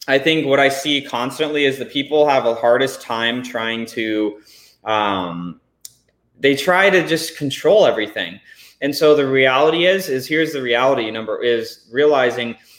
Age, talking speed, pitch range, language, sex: 20-39, 160 wpm, 120-160 Hz, English, male